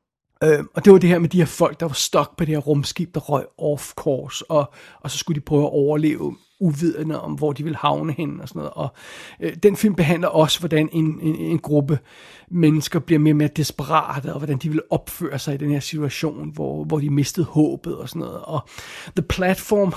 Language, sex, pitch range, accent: Danish, male, 145-170 Hz, native